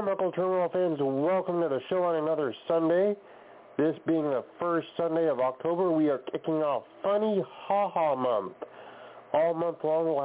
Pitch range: 135-170 Hz